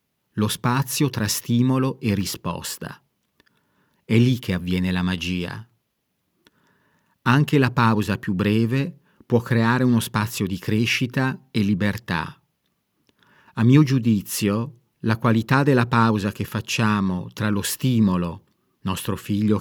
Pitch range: 100-125 Hz